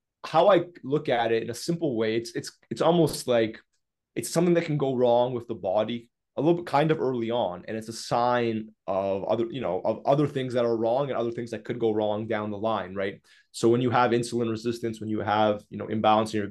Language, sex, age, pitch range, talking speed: English, male, 20-39, 110-125 Hz, 250 wpm